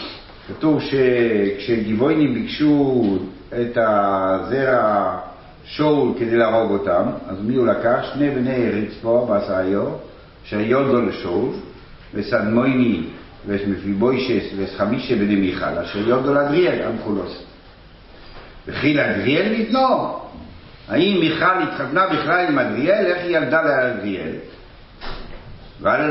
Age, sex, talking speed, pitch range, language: 60-79, male, 100 wpm, 100-150 Hz, Hebrew